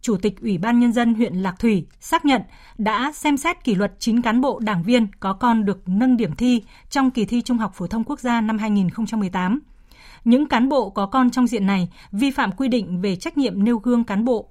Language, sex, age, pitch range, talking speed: Vietnamese, female, 20-39, 195-245 Hz, 235 wpm